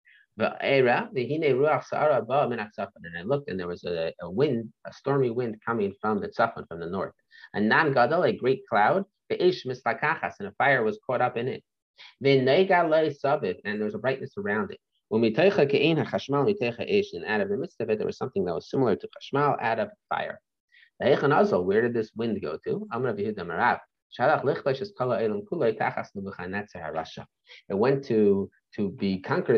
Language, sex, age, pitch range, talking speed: English, male, 30-49, 105-150 Hz, 145 wpm